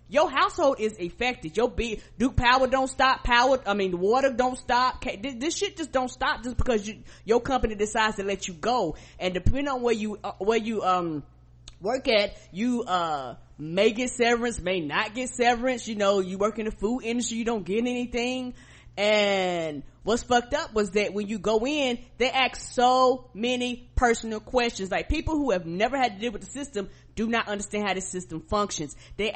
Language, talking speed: English, 200 wpm